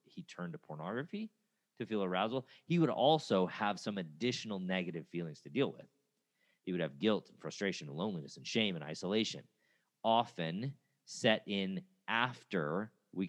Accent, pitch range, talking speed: American, 85-135 Hz, 160 wpm